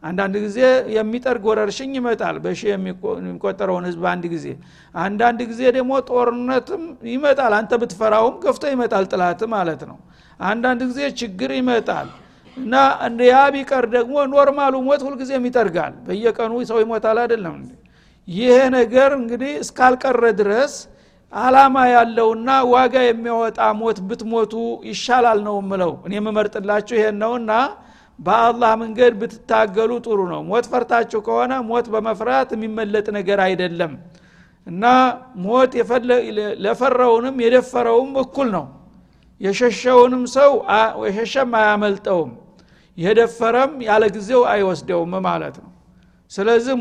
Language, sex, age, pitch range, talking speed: Amharic, male, 60-79, 210-250 Hz, 100 wpm